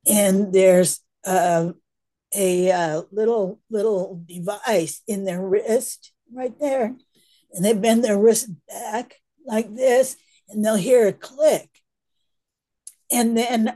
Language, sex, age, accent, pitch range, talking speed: English, female, 50-69, American, 180-225 Hz, 120 wpm